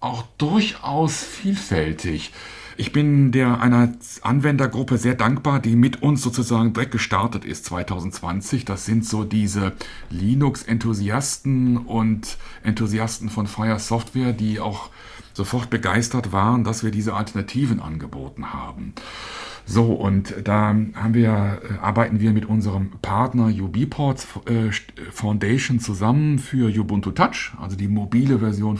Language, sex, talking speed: German, male, 125 wpm